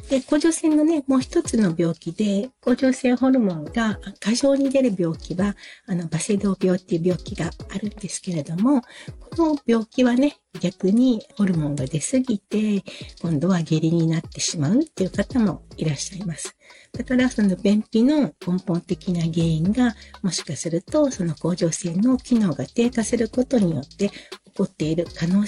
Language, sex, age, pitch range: Japanese, female, 60-79, 175-240 Hz